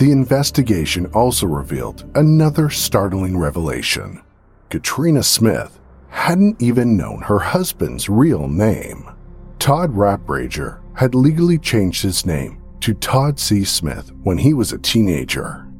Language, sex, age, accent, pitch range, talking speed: English, male, 50-69, American, 75-120 Hz, 120 wpm